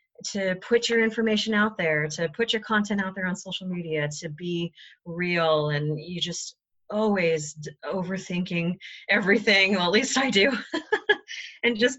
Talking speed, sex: 160 wpm, female